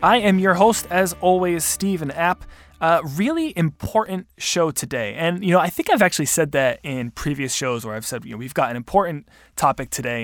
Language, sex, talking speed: English, male, 215 wpm